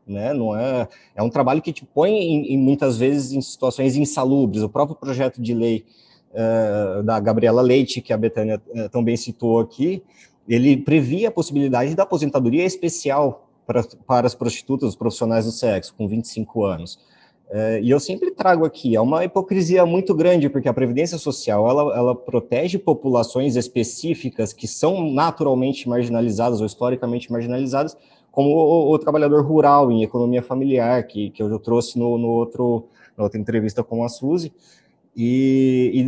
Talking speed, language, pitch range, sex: 165 wpm, Portuguese, 115-145 Hz, male